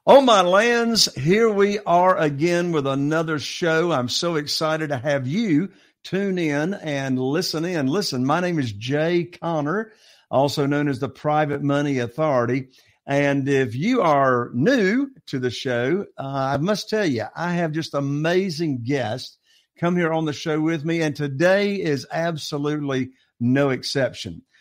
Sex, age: male, 50-69